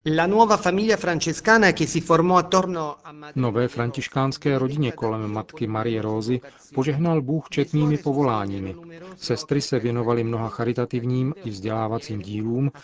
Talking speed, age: 90 wpm, 40-59